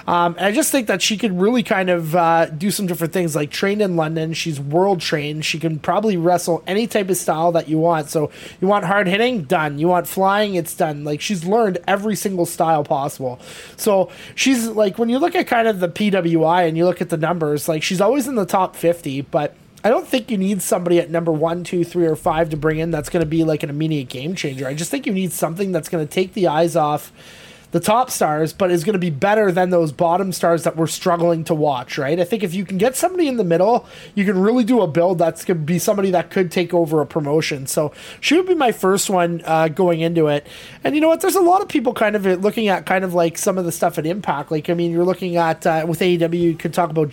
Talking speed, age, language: 265 wpm, 20-39, English